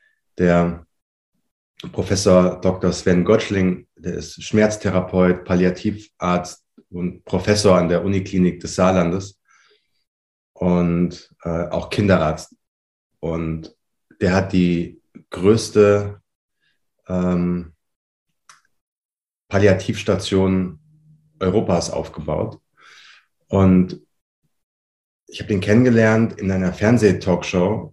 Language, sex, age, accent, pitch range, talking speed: German, male, 30-49, German, 90-110 Hz, 80 wpm